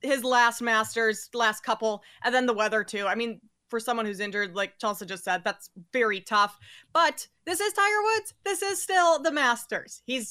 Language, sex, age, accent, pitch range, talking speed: English, female, 20-39, American, 220-290 Hz, 200 wpm